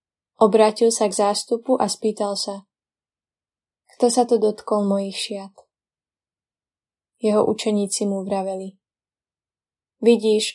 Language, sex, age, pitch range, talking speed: Slovak, female, 20-39, 200-220 Hz, 100 wpm